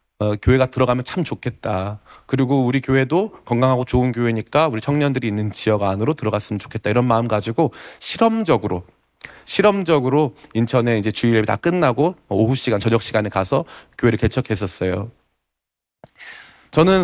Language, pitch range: Korean, 105-150 Hz